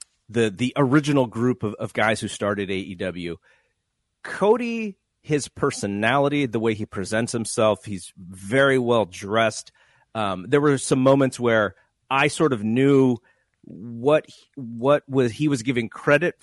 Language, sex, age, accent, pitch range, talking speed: English, male, 30-49, American, 110-140 Hz, 145 wpm